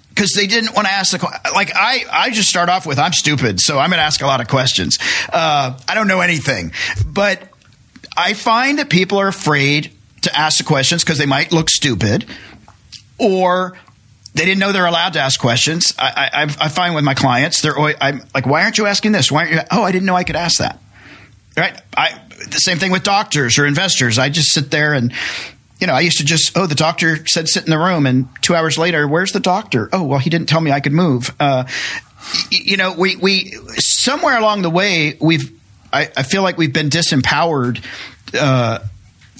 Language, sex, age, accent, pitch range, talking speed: English, male, 40-59, American, 135-175 Hz, 220 wpm